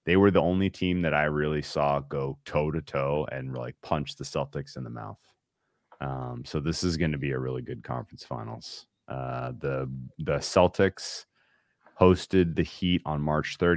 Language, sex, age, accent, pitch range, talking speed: English, male, 30-49, American, 70-80 Hz, 185 wpm